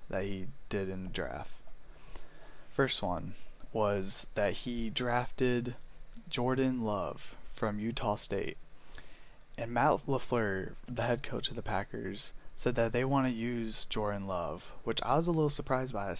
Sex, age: male, 20-39